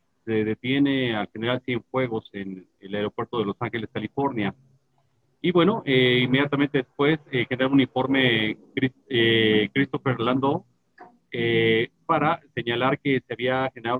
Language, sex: Spanish, male